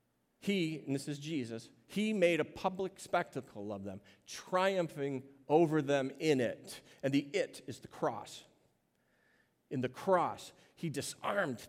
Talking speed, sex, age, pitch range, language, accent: 145 wpm, male, 40-59, 120-165 Hz, English, American